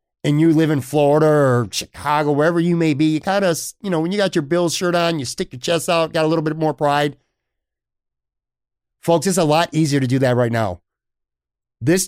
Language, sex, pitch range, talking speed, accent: English, male, 130-165 Hz, 225 wpm, American